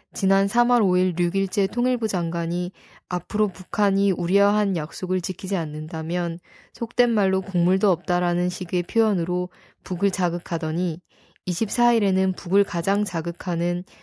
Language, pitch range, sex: Korean, 175-210 Hz, female